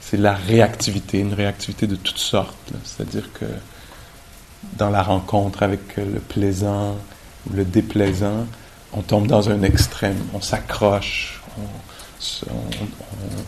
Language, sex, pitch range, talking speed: English, male, 100-110 Hz, 125 wpm